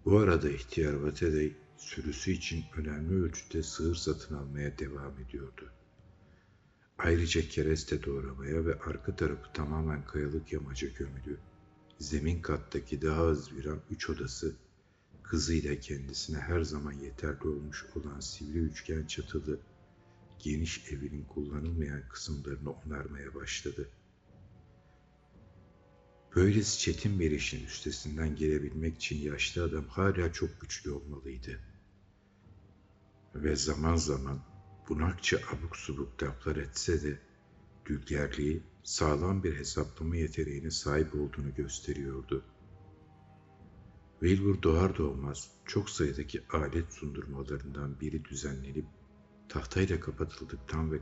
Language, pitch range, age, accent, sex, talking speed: Turkish, 75-85 Hz, 60-79, native, male, 105 wpm